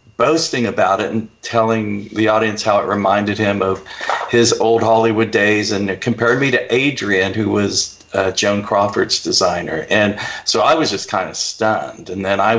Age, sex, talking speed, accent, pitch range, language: 50-69, male, 185 wpm, American, 100-115 Hz, English